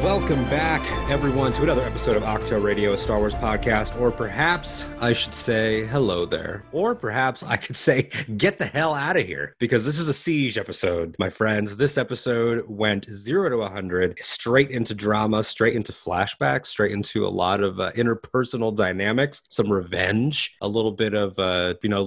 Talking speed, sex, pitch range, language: 185 wpm, male, 90-115 Hz, English